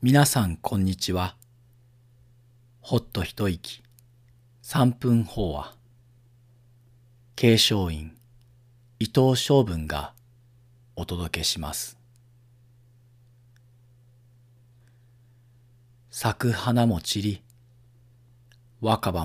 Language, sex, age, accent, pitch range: Japanese, male, 40-59, native, 110-120 Hz